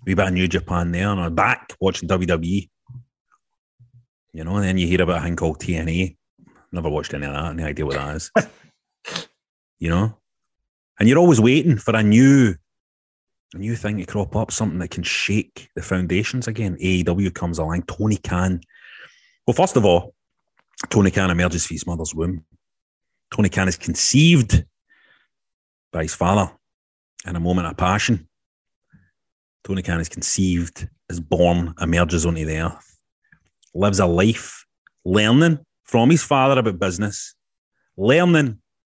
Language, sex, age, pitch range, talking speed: English, male, 30-49, 85-125 Hz, 155 wpm